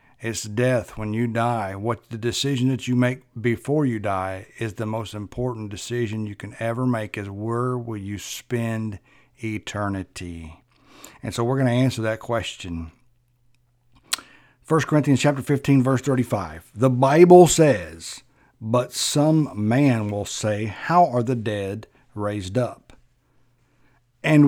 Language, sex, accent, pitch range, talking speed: English, male, American, 110-140 Hz, 140 wpm